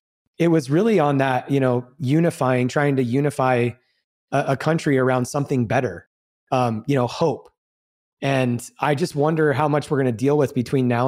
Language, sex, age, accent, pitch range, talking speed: English, male, 30-49, American, 130-160 Hz, 185 wpm